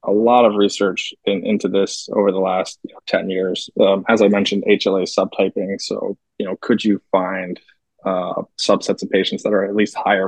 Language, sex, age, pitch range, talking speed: English, male, 20-39, 100-110 Hz, 205 wpm